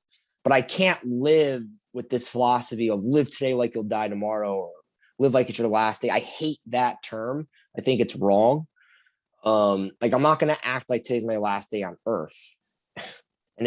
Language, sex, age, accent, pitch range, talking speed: English, male, 20-39, American, 105-135 Hz, 190 wpm